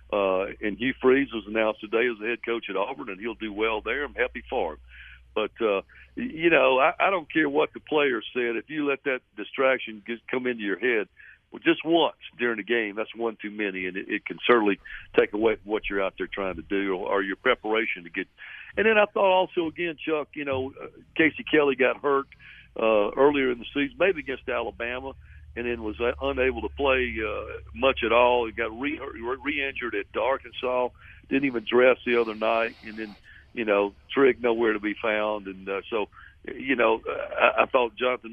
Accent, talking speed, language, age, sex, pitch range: American, 210 wpm, English, 60-79, male, 105-130 Hz